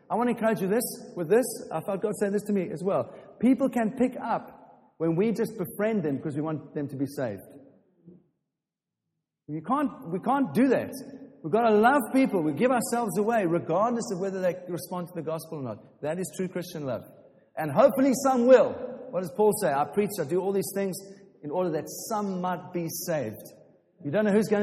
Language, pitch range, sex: English, 155-215 Hz, male